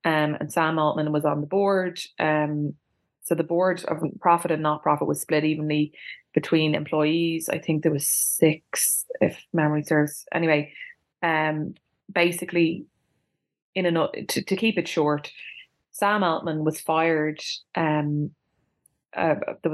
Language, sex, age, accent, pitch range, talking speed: English, female, 20-39, Irish, 150-170 Hz, 145 wpm